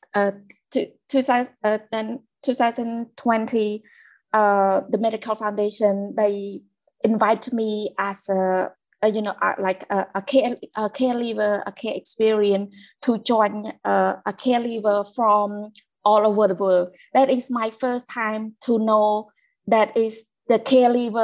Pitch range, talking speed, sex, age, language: 200-225 Hz, 140 wpm, female, 20-39, English